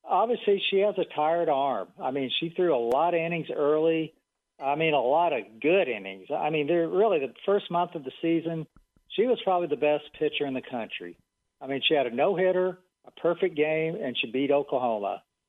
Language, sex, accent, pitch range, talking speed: English, male, American, 150-190 Hz, 205 wpm